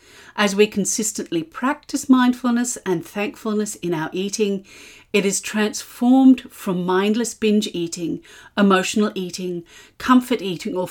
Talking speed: 120 wpm